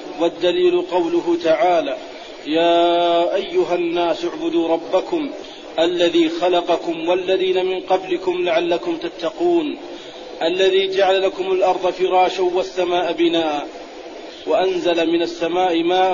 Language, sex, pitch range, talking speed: Arabic, male, 175-195 Hz, 95 wpm